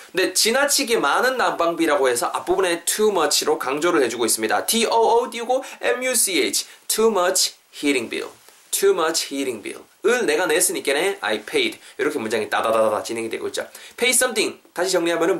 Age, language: 20-39, Korean